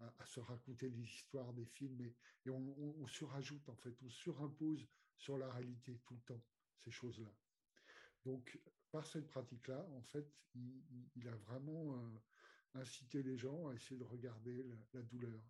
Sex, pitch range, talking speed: male, 120-140 Hz, 180 wpm